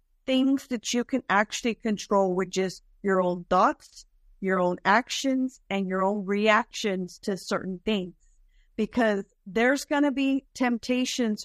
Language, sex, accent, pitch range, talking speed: English, female, American, 195-245 Hz, 140 wpm